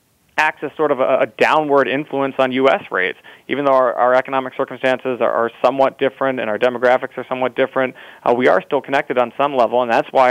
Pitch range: 120-140 Hz